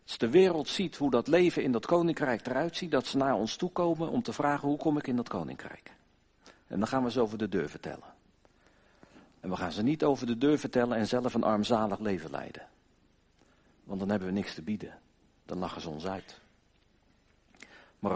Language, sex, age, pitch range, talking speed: Dutch, male, 50-69, 100-145 Hz, 210 wpm